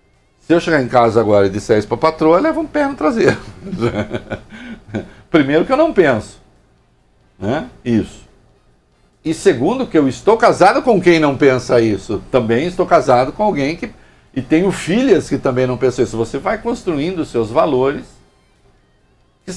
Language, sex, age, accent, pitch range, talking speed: English, male, 60-79, Brazilian, 120-195 Hz, 175 wpm